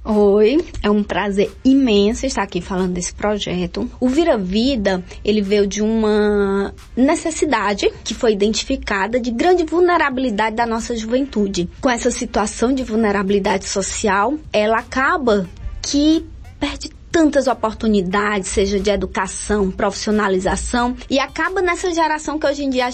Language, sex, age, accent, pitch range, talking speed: Portuguese, female, 20-39, Brazilian, 200-270 Hz, 135 wpm